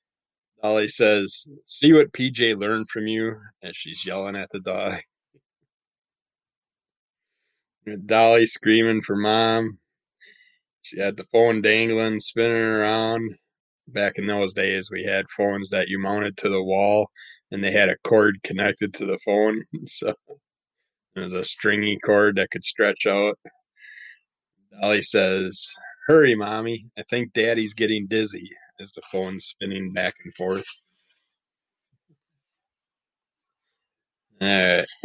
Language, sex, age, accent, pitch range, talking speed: English, male, 20-39, American, 105-125 Hz, 125 wpm